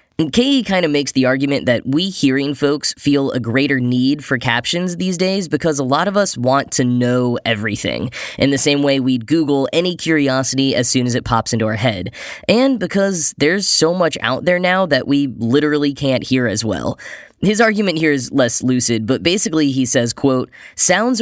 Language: English